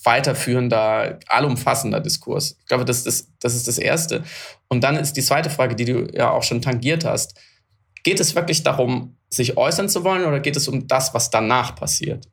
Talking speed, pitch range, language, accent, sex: 195 wpm, 120-150 Hz, German, German, male